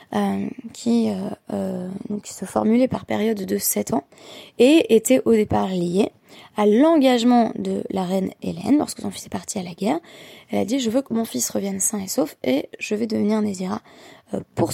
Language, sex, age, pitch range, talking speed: French, female, 20-39, 195-245 Hz, 210 wpm